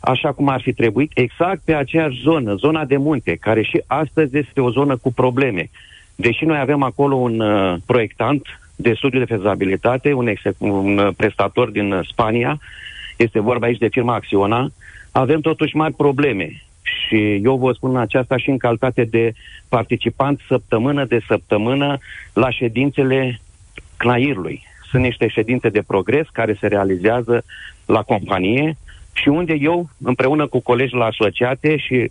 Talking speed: 155 wpm